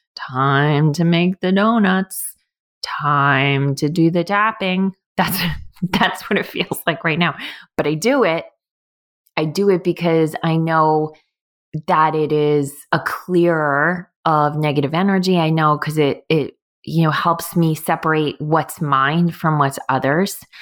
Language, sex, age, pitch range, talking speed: English, female, 20-39, 160-190 Hz, 150 wpm